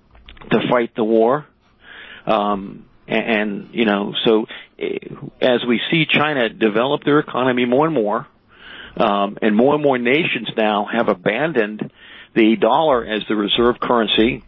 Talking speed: 145 wpm